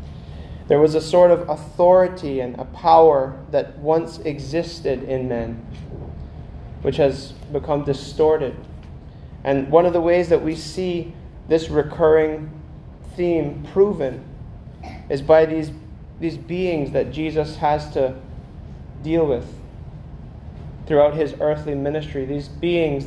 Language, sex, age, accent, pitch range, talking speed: English, male, 30-49, American, 140-160 Hz, 120 wpm